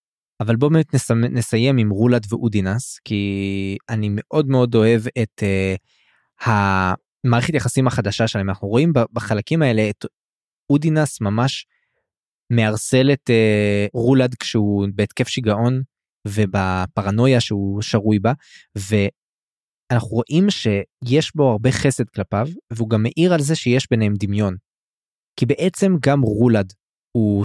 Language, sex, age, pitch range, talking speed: Hebrew, male, 20-39, 105-130 Hz, 120 wpm